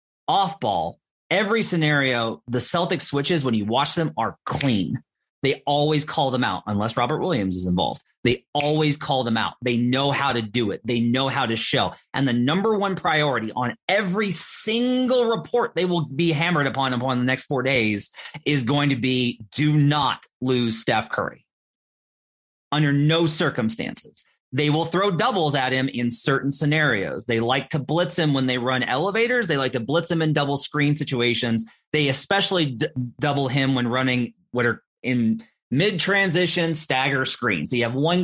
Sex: male